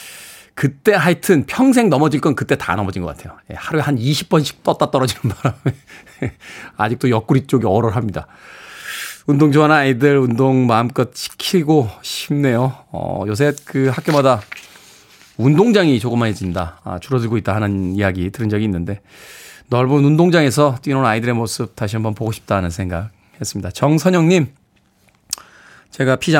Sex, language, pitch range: male, Korean, 110-160 Hz